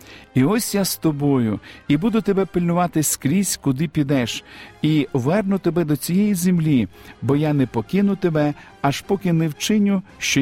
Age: 50-69